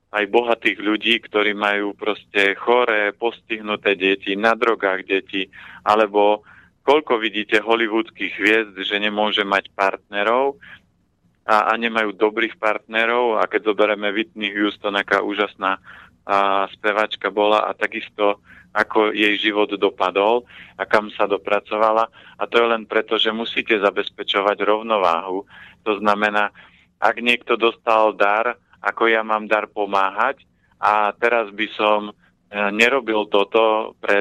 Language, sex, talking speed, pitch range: Slovak, male, 130 wpm, 100-110 Hz